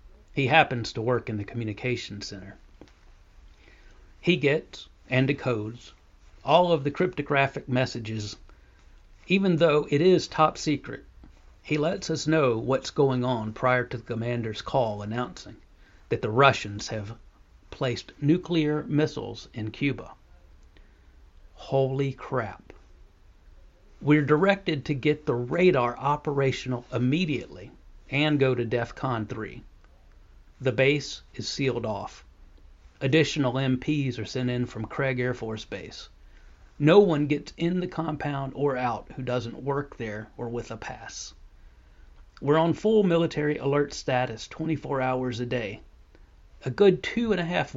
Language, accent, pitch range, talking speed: English, American, 100-145 Hz, 135 wpm